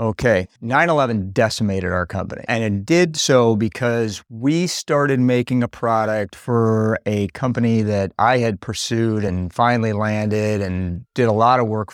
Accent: American